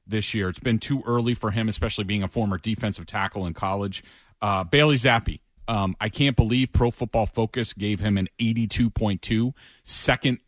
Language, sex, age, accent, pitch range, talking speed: English, male, 30-49, American, 110-135 Hz, 180 wpm